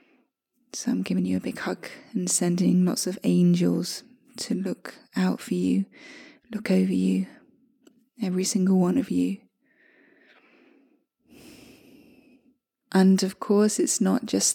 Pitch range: 180-260 Hz